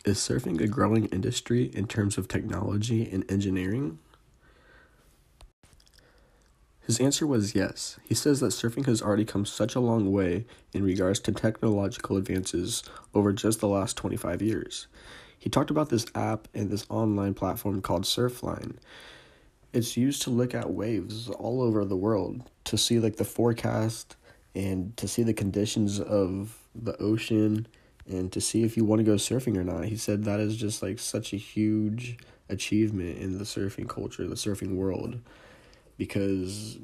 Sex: male